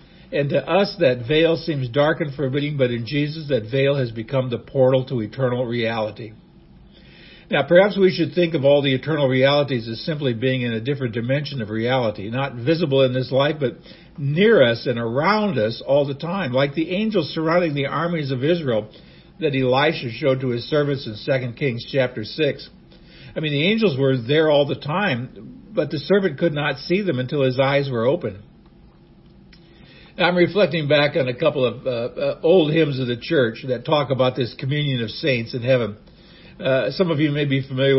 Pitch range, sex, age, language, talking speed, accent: 130-170 Hz, male, 60-79, English, 195 wpm, American